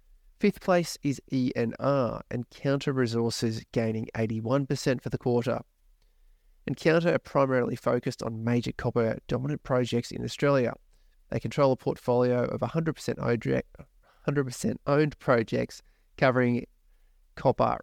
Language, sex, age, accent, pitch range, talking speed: English, male, 30-49, Australian, 115-135 Hz, 120 wpm